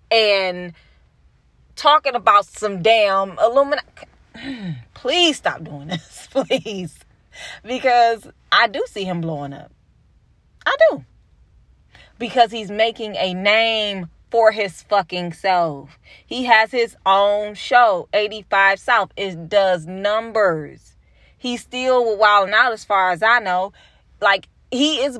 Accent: American